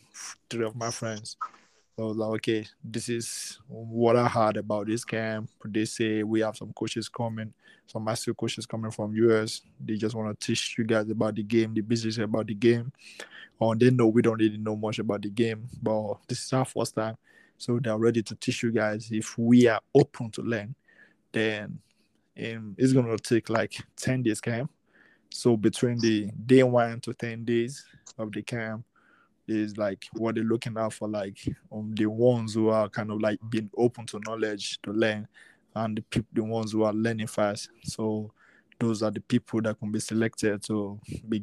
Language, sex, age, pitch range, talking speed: English, male, 20-39, 110-120 Hz, 200 wpm